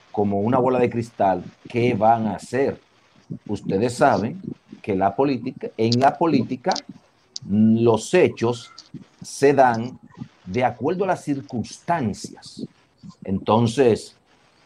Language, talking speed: Spanish, 110 wpm